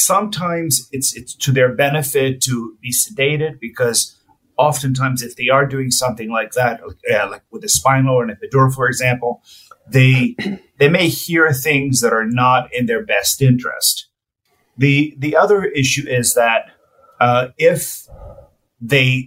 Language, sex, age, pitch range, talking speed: English, male, 30-49, 120-155 Hz, 155 wpm